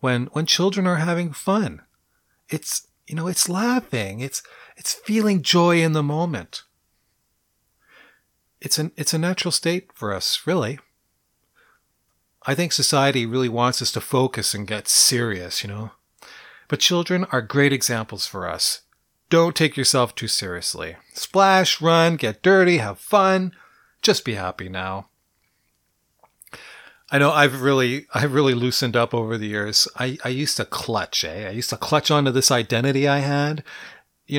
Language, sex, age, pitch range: English, male, 40-59, 120-160 Hz